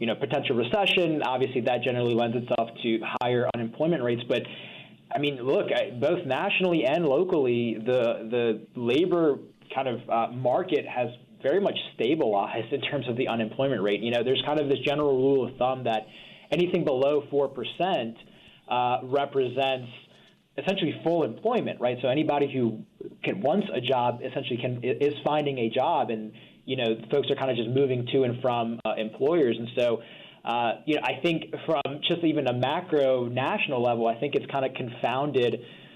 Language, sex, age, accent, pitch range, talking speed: English, male, 20-39, American, 120-145 Hz, 175 wpm